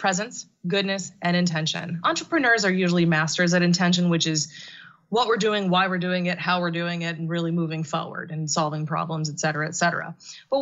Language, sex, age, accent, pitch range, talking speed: English, female, 20-39, American, 175-215 Hz, 200 wpm